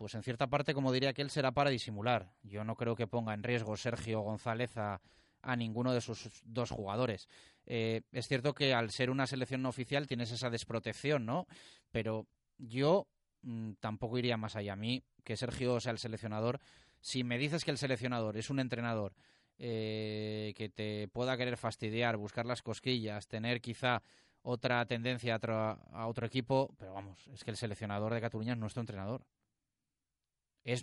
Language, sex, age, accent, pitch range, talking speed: Spanish, male, 30-49, Spanish, 110-130 Hz, 180 wpm